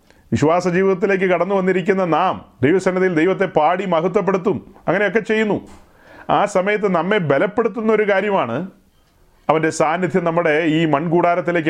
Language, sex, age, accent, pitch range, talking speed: Malayalam, male, 40-59, native, 160-195 Hz, 115 wpm